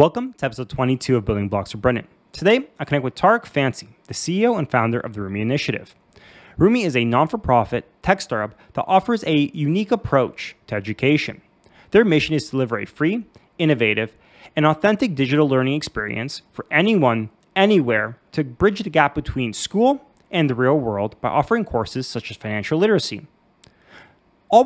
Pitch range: 120-180 Hz